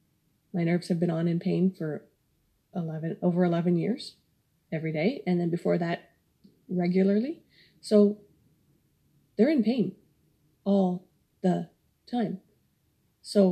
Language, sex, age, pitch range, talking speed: English, female, 30-49, 170-195 Hz, 115 wpm